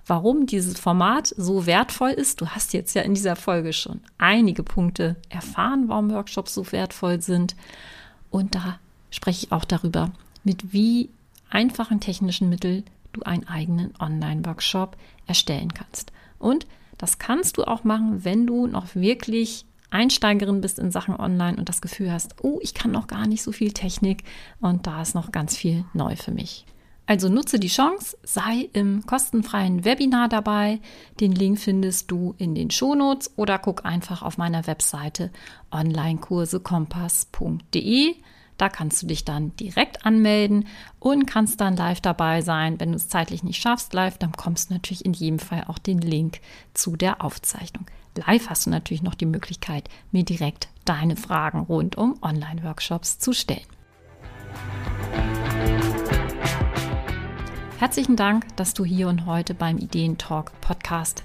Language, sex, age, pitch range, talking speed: German, female, 40-59, 165-215 Hz, 155 wpm